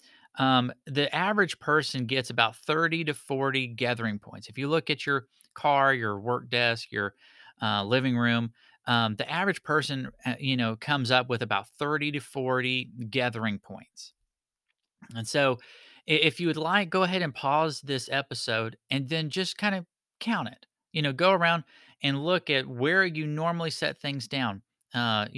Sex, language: male, English